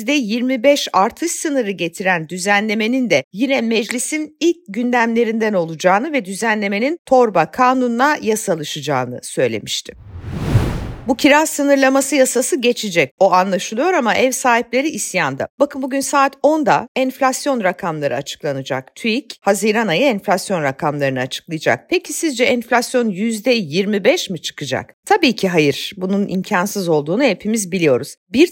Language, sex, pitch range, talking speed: Turkish, female, 185-270 Hz, 120 wpm